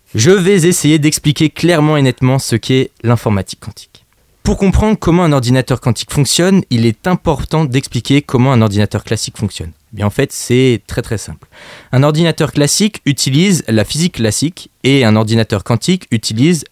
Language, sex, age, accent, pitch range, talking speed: French, male, 20-39, French, 115-155 Hz, 170 wpm